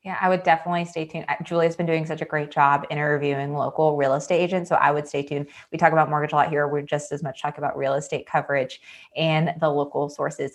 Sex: female